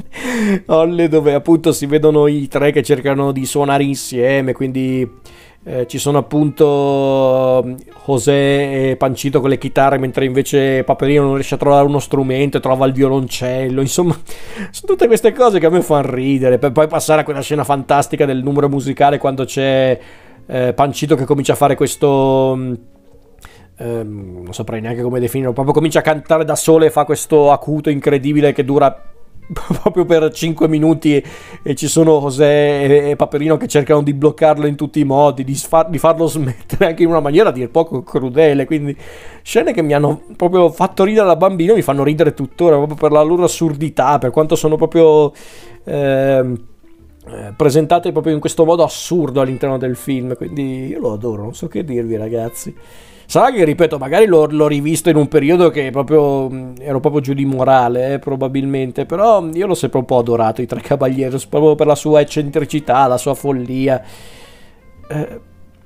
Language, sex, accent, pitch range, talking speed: Italian, male, native, 130-155 Hz, 175 wpm